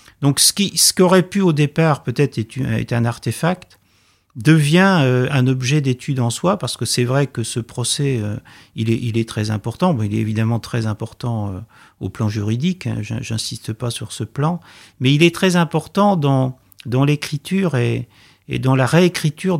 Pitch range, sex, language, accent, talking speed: 115-145 Hz, male, French, French, 180 wpm